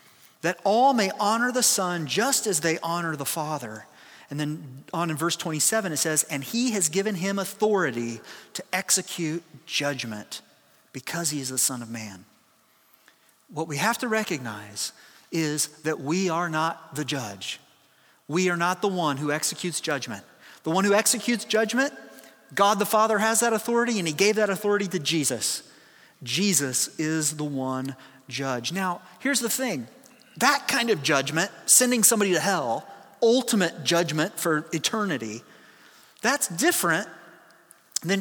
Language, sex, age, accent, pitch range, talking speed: English, male, 30-49, American, 155-225 Hz, 155 wpm